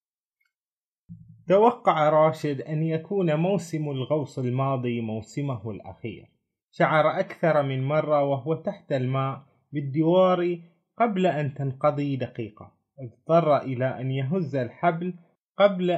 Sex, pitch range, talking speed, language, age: male, 125-165 Hz, 100 wpm, Arabic, 20-39